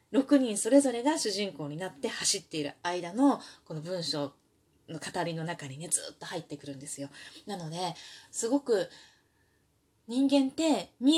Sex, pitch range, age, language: female, 175-285 Hz, 20-39, Japanese